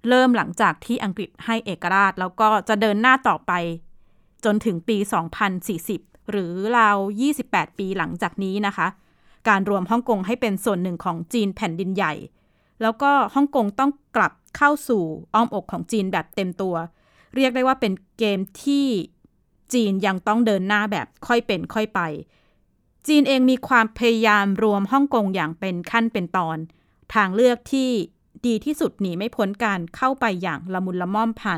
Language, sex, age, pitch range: Thai, female, 20-39, 190-235 Hz